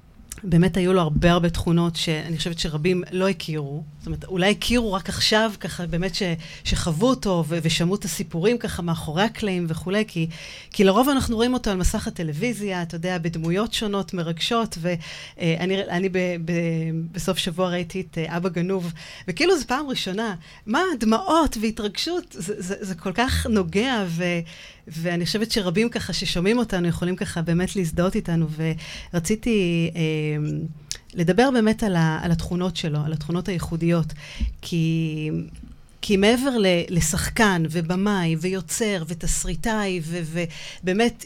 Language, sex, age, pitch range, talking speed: Hebrew, female, 40-59, 165-210 Hz, 140 wpm